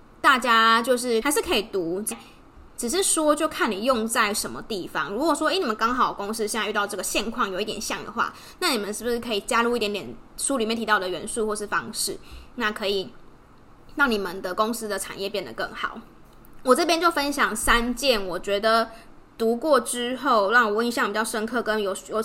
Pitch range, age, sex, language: 210-260 Hz, 20-39, female, Chinese